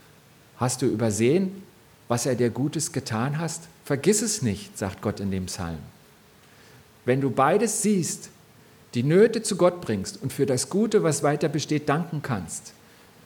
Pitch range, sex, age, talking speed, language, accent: 120-180 Hz, male, 50-69, 160 wpm, German, German